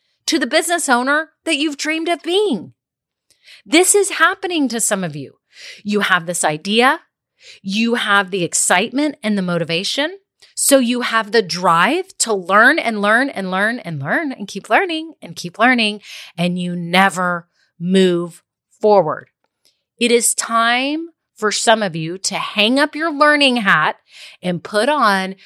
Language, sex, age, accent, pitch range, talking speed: English, female, 30-49, American, 180-280 Hz, 160 wpm